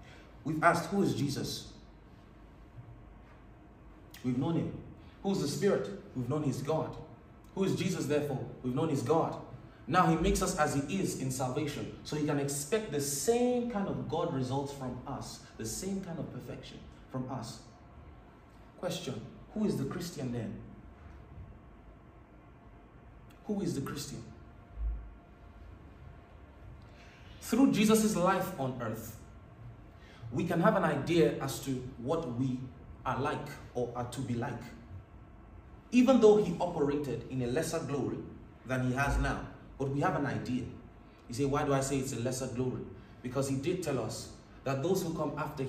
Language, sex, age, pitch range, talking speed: English, male, 30-49, 115-160 Hz, 160 wpm